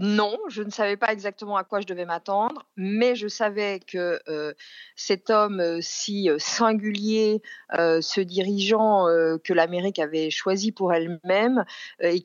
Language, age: French, 50-69